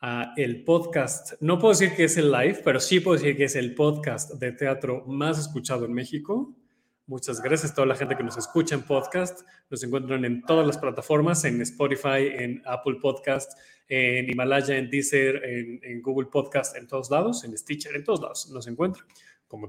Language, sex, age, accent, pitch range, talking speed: Spanish, male, 30-49, Mexican, 130-160 Hz, 200 wpm